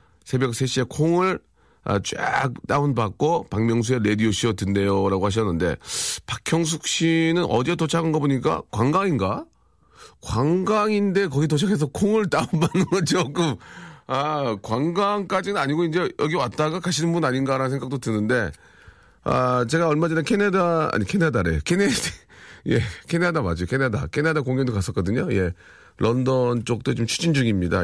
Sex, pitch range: male, 100-160 Hz